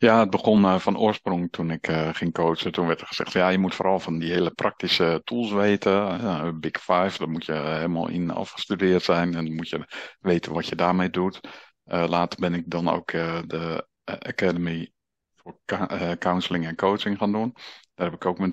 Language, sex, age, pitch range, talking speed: Dutch, male, 50-69, 85-100 Hz, 195 wpm